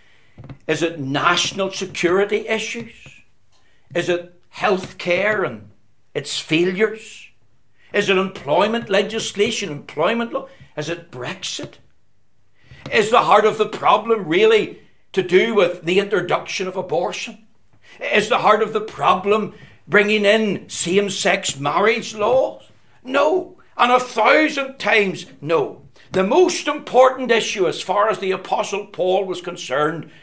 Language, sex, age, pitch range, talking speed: English, male, 60-79, 175-225 Hz, 125 wpm